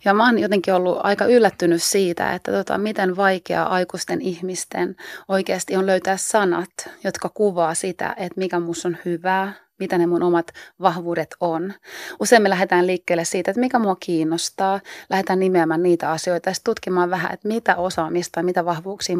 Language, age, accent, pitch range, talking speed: Finnish, 30-49, native, 175-195 Hz, 170 wpm